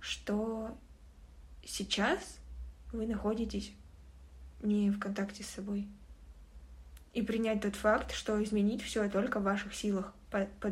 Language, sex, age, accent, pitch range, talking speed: Russian, female, 20-39, native, 200-230 Hz, 120 wpm